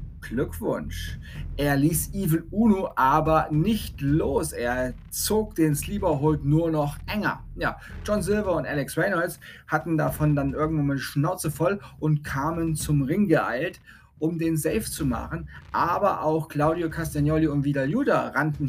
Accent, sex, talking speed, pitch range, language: German, male, 150 wpm, 140-165 Hz, German